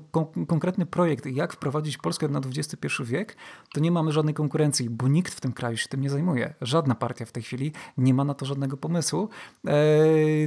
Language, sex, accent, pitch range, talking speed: Polish, male, native, 130-155 Hz, 195 wpm